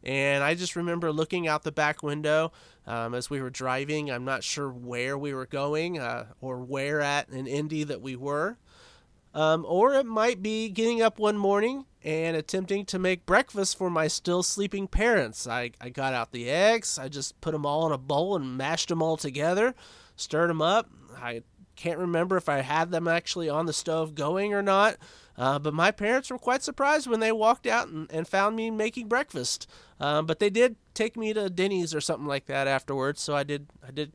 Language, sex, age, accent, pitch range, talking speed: English, male, 30-49, American, 135-185 Hz, 210 wpm